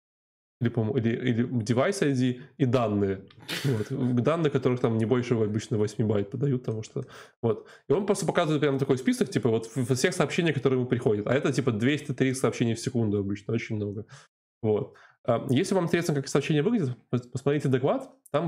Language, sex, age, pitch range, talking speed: Russian, male, 20-39, 115-145 Hz, 170 wpm